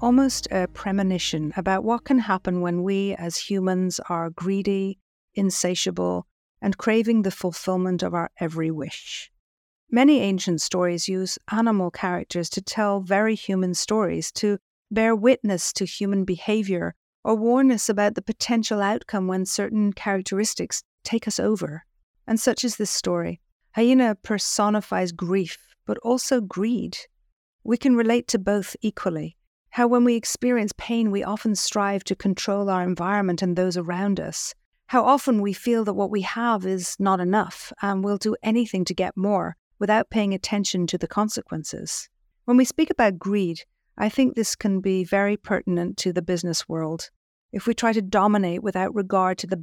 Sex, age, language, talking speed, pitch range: female, 50-69, English, 160 wpm, 185-225 Hz